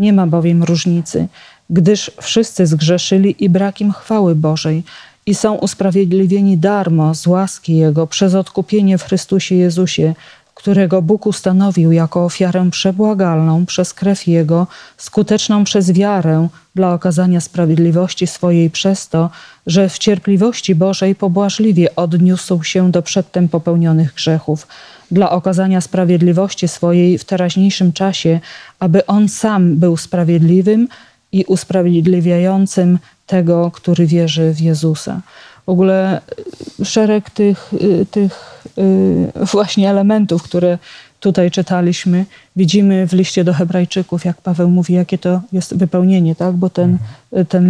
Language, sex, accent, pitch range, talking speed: Polish, female, native, 170-195 Hz, 120 wpm